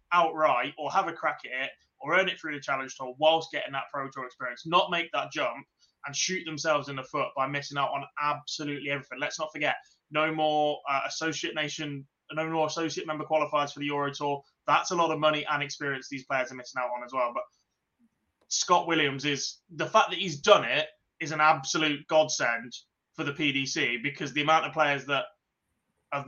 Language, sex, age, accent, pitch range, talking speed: English, male, 20-39, British, 140-155 Hz, 210 wpm